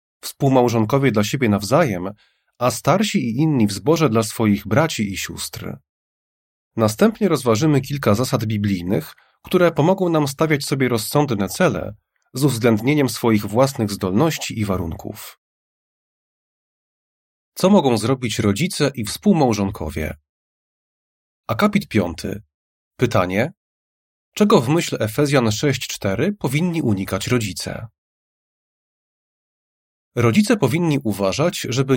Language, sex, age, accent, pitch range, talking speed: Polish, male, 30-49, native, 100-145 Hz, 100 wpm